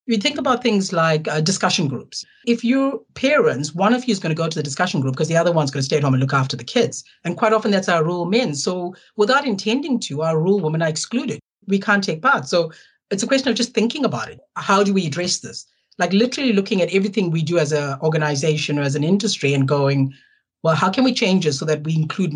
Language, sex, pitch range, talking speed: English, female, 145-200 Hz, 260 wpm